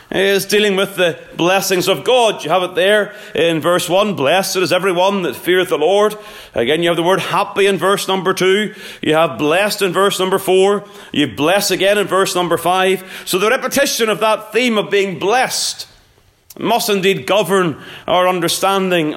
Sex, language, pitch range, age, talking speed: male, English, 175-210 Hz, 30-49, 185 wpm